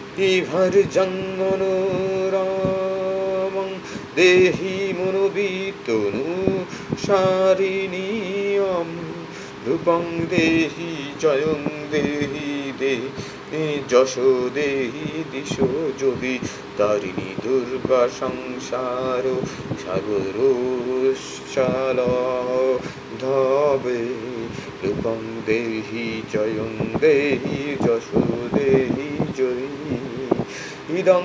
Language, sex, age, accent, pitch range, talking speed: Bengali, male, 30-49, native, 130-190 Hz, 45 wpm